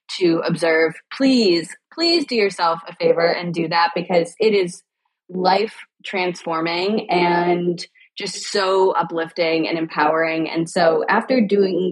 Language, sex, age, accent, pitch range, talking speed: English, female, 20-39, American, 175-245 Hz, 130 wpm